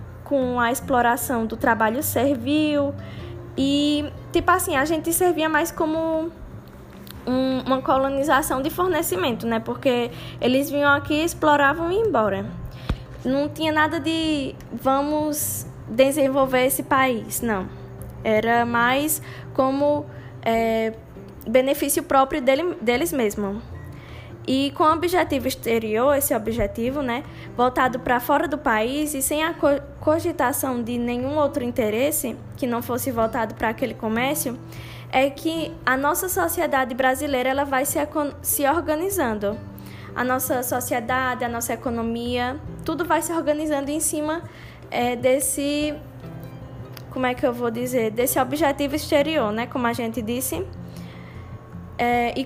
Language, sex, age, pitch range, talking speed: Portuguese, female, 10-29, 245-300 Hz, 130 wpm